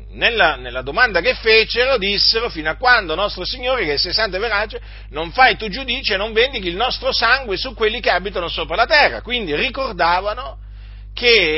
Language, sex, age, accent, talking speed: Italian, male, 50-69, native, 185 wpm